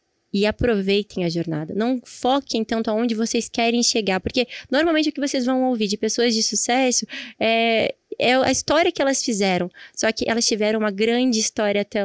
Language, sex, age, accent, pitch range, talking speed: Portuguese, female, 20-39, Brazilian, 210-255 Hz, 185 wpm